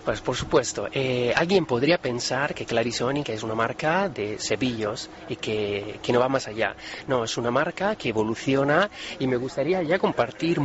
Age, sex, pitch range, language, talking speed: 30-49, male, 125-170 Hz, Spanish, 180 wpm